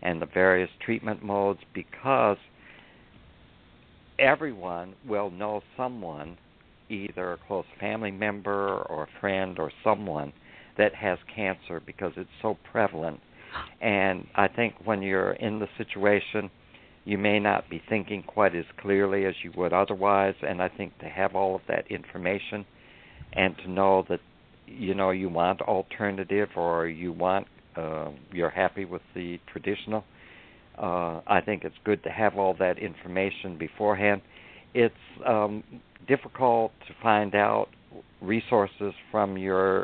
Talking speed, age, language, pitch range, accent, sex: 140 wpm, 60-79, English, 90-105 Hz, American, male